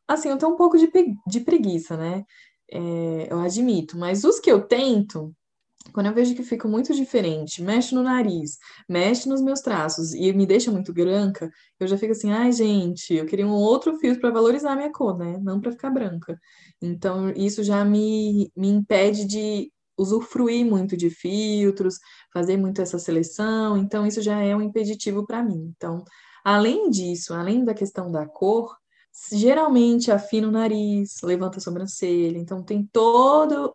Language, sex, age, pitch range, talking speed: Portuguese, female, 20-39, 180-230 Hz, 175 wpm